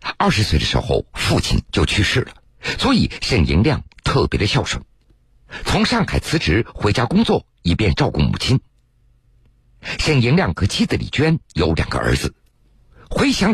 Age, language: 50-69, Chinese